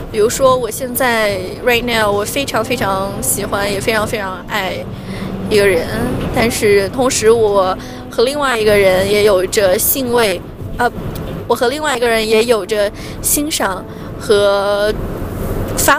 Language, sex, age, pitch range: Chinese, female, 20-39, 215-290 Hz